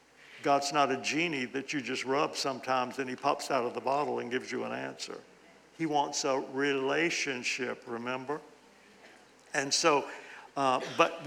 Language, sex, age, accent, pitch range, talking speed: English, male, 60-79, American, 130-160 Hz, 160 wpm